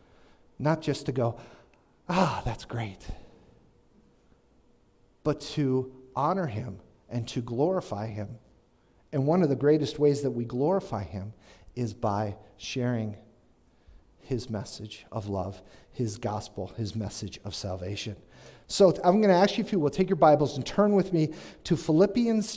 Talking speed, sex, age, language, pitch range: 150 wpm, male, 50-69, English, 110-165 Hz